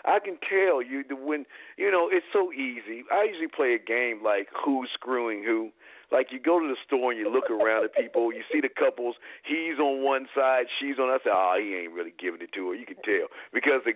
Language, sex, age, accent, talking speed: English, male, 50-69, American, 245 wpm